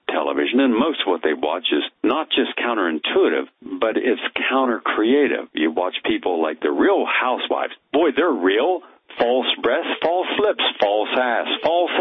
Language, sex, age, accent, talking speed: English, male, 60-79, American, 155 wpm